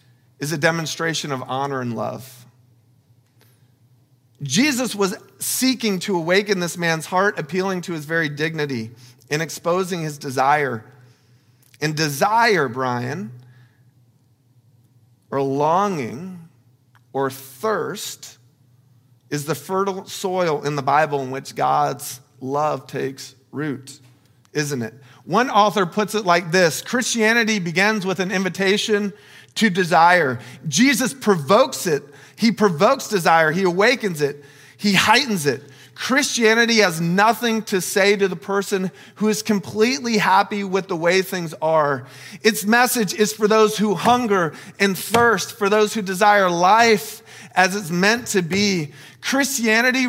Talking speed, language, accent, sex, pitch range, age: 130 wpm, English, American, male, 135-205 Hz, 40-59